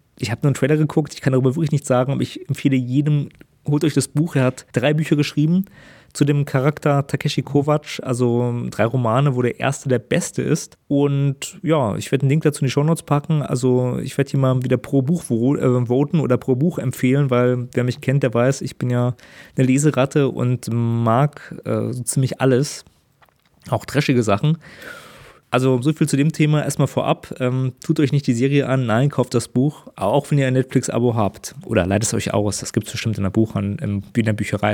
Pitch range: 125-150 Hz